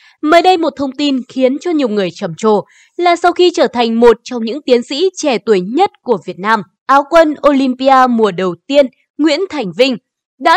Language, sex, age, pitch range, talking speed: Vietnamese, female, 20-39, 230-315 Hz, 210 wpm